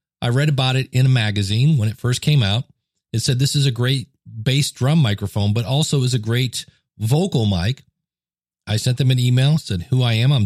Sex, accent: male, American